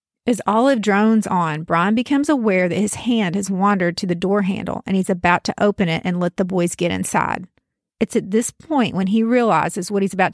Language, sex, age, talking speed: English, female, 40-59, 220 wpm